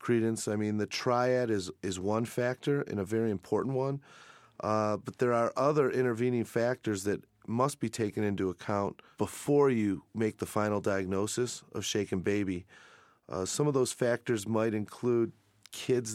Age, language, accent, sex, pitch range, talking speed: 30-49, English, American, male, 100-120 Hz, 165 wpm